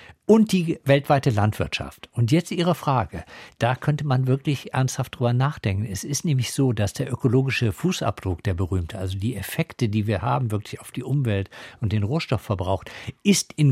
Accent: German